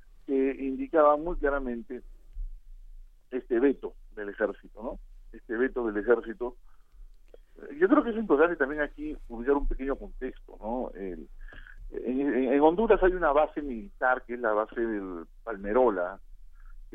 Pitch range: 105-140 Hz